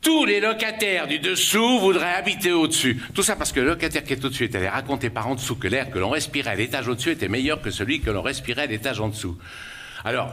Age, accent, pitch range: 60-79, French, 100-135 Hz